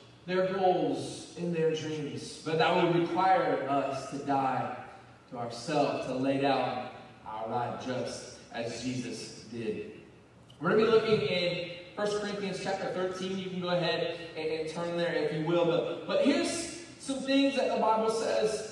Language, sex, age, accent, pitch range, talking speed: English, male, 20-39, American, 140-215 Hz, 165 wpm